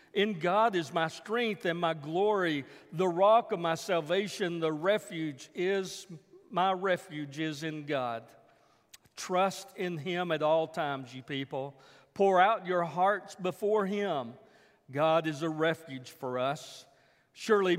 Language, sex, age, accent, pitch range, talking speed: English, male, 50-69, American, 150-190 Hz, 140 wpm